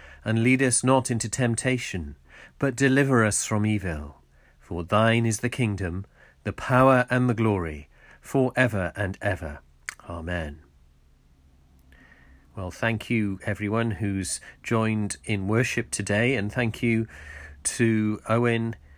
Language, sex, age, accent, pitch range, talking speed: English, male, 40-59, British, 80-120 Hz, 125 wpm